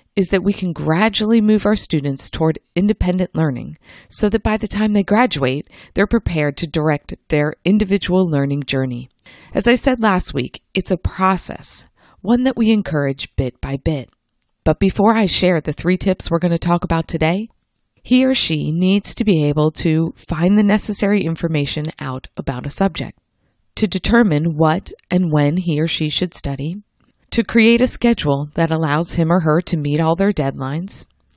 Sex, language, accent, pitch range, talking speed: female, English, American, 155-210 Hz, 180 wpm